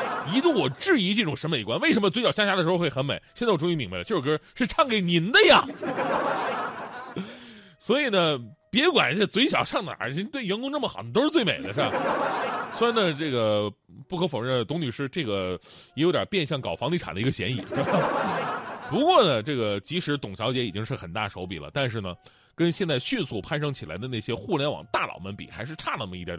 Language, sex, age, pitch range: Chinese, male, 30-49, 120-180 Hz